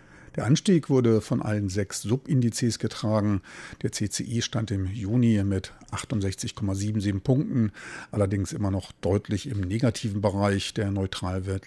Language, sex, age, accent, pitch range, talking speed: German, male, 50-69, German, 100-115 Hz, 130 wpm